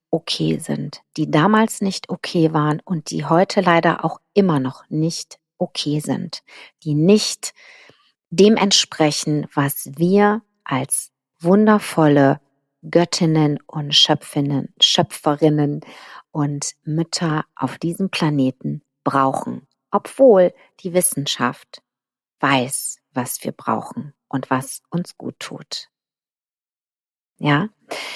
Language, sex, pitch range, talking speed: German, female, 150-200 Hz, 100 wpm